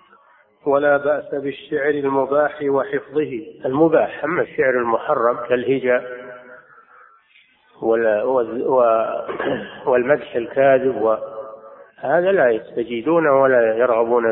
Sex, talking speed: male, 70 wpm